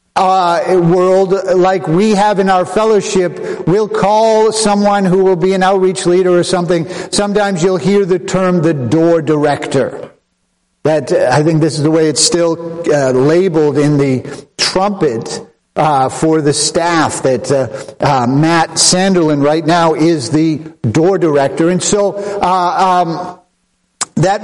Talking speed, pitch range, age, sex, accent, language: 160 wpm, 130-185 Hz, 50-69, male, American, English